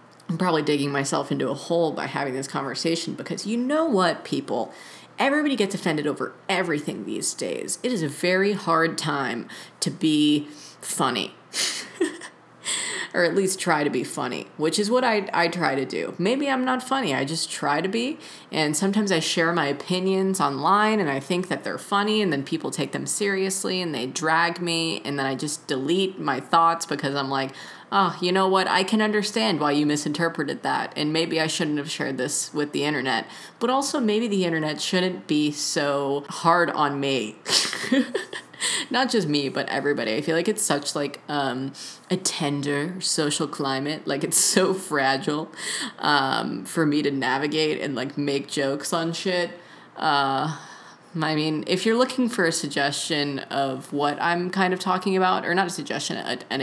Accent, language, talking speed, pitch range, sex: American, English, 185 wpm, 145-190 Hz, female